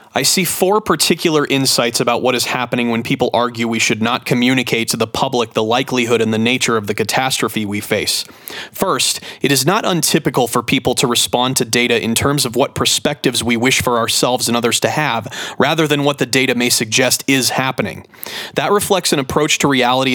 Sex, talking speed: male, 205 wpm